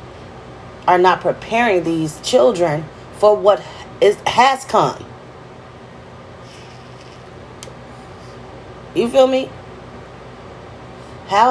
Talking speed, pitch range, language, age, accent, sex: 75 wpm, 190-255 Hz, English, 30-49, American, female